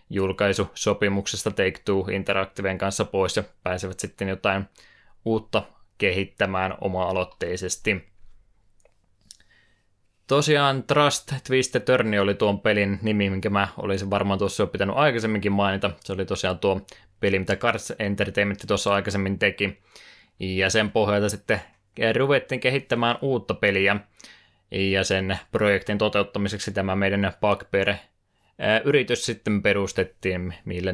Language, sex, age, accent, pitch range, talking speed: Finnish, male, 20-39, native, 95-105 Hz, 115 wpm